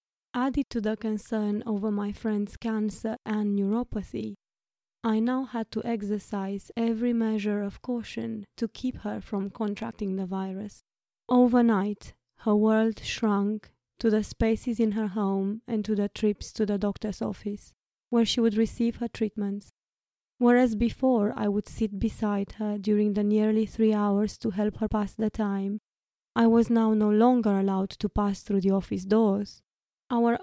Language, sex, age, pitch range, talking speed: English, female, 20-39, 205-230 Hz, 160 wpm